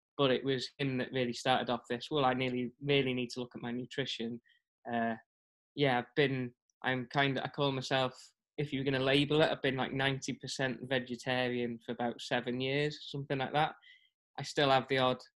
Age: 10-29